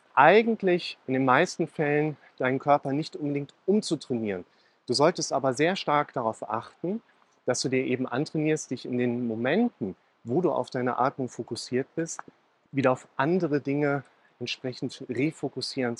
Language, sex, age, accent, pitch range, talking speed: German, male, 40-59, German, 120-145 Hz, 145 wpm